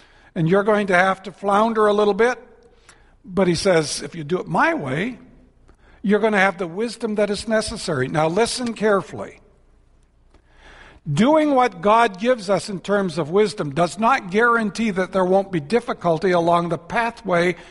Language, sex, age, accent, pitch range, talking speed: English, male, 60-79, American, 165-220 Hz, 175 wpm